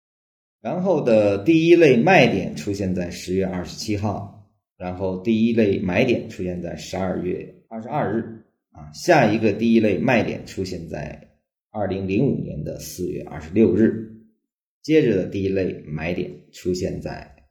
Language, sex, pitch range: Chinese, male, 85-110 Hz